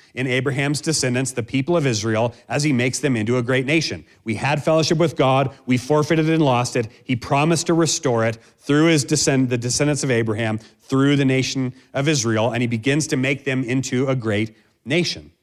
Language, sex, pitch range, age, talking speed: English, male, 105-135 Hz, 40-59, 200 wpm